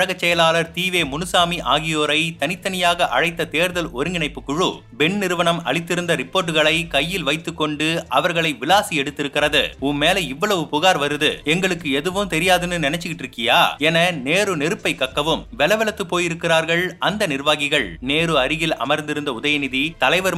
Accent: native